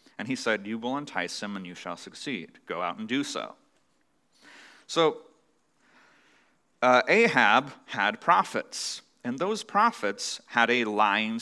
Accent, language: American, English